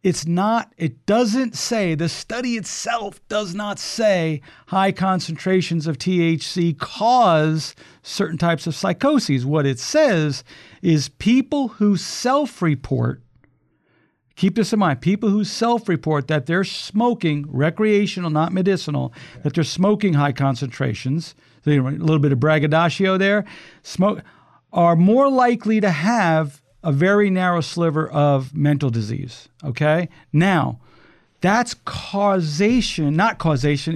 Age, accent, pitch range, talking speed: 50-69, American, 150-210 Hz, 125 wpm